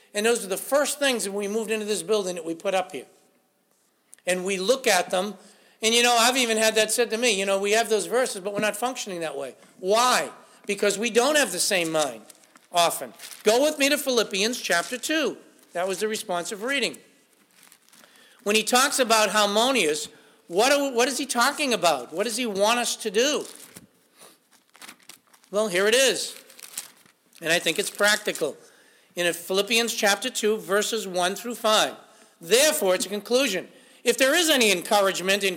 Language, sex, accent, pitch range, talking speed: English, male, American, 205-270 Hz, 185 wpm